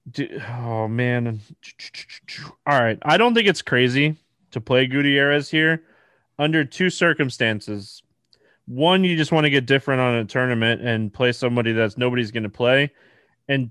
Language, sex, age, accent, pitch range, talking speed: English, male, 20-39, American, 120-150 Hz, 155 wpm